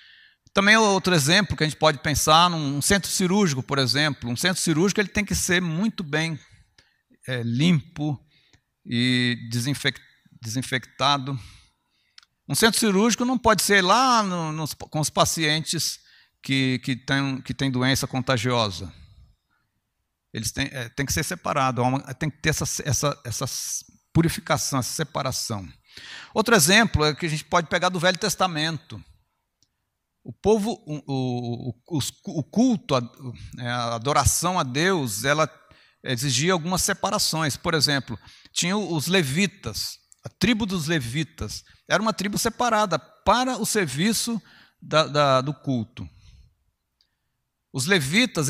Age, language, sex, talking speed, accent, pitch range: 60-79, Portuguese, male, 135 wpm, Brazilian, 125-180 Hz